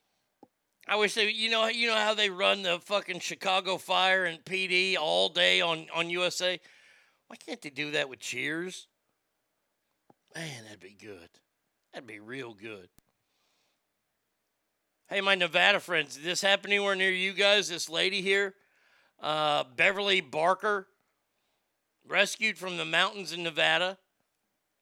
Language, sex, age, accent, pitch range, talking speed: English, male, 40-59, American, 160-190 Hz, 145 wpm